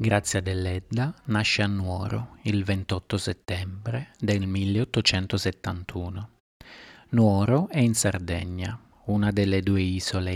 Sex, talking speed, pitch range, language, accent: male, 105 wpm, 95-115 Hz, Italian, native